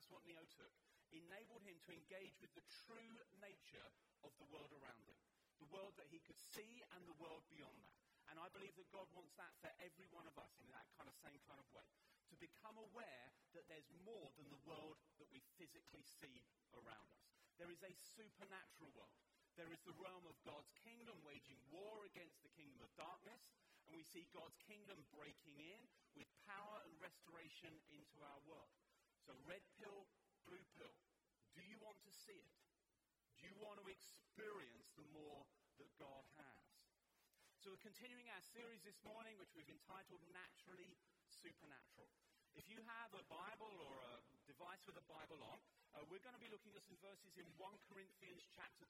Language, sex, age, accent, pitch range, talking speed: English, male, 40-59, British, 155-205 Hz, 190 wpm